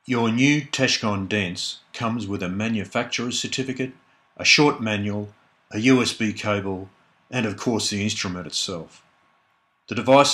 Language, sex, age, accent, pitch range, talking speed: English, male, 50-69, Australian, 95-120 Hz, 135 wpm